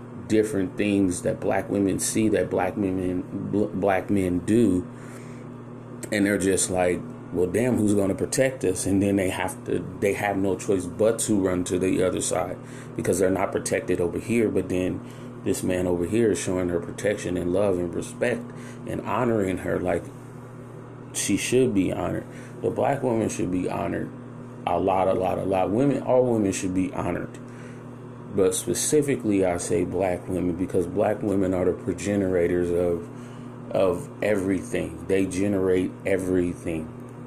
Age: 30-49